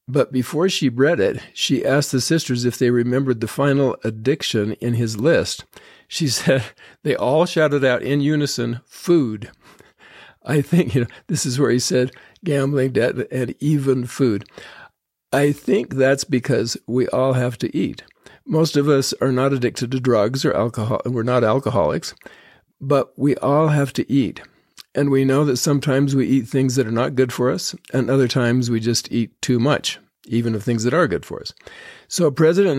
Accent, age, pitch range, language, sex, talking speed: American, 50-69, 120-145 Hz, English, male, 185 wpm